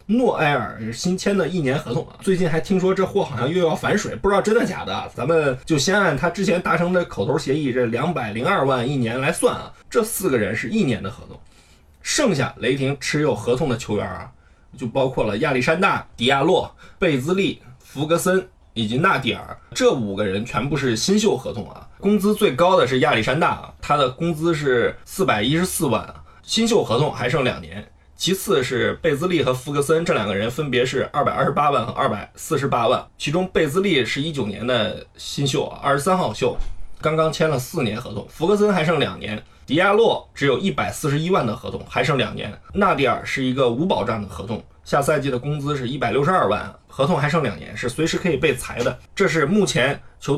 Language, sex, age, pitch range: Chinese, male, 20-39, 120-180 Hz